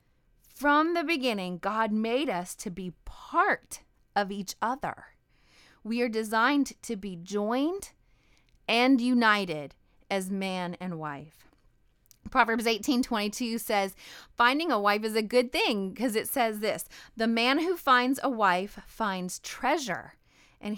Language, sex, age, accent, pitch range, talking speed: English, female, 30-49, American, 200-260 Hz, 140 wpm